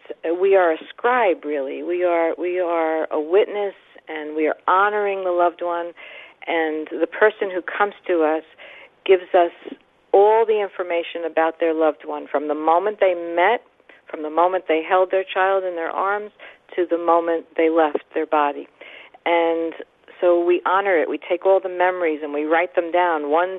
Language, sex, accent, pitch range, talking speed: English, female, American, 160-185 Hz, 180 wpm